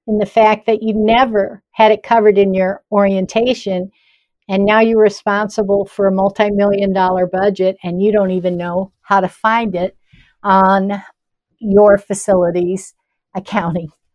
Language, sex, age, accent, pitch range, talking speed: English, female, 60-79, American, 185-225 Hz, 140 wpm